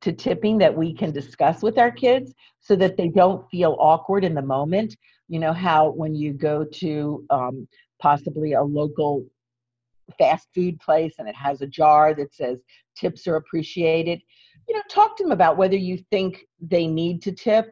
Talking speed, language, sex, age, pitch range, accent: 185 wpm, English, female, 50-69, 155-235 Hz, American